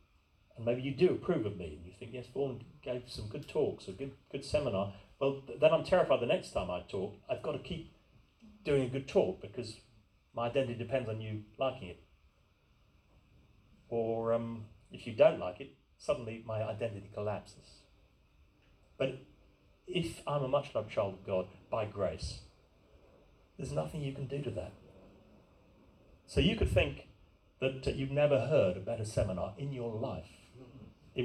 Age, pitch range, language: 40-59, 100-140 Hz, English